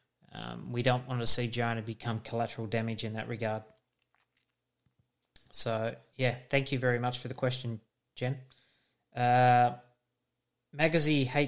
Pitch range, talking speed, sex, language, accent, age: 120-135 Hz, 130 wpm, male, English, Australian, 30-49